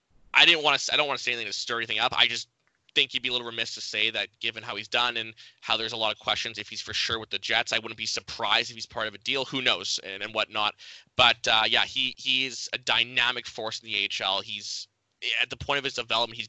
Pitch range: 110-130 Hz